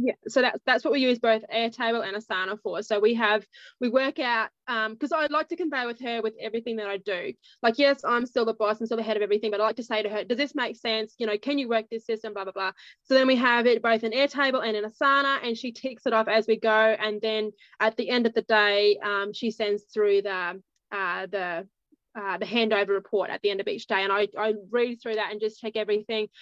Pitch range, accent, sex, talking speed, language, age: 210-245 Hz, Australian, female, 275 wpm, English, 20-39